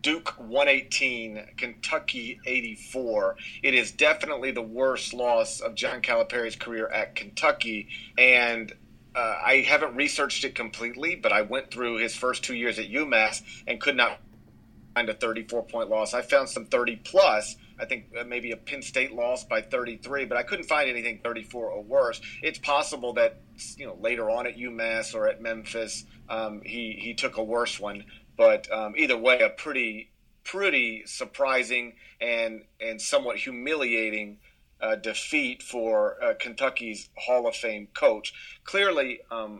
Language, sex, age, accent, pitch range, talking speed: English, male, 40-59, American, 110-145 Hz, 155 wpm